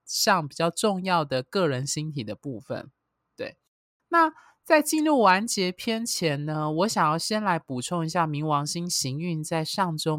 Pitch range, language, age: 145-215 Hz, Chinese, 20-39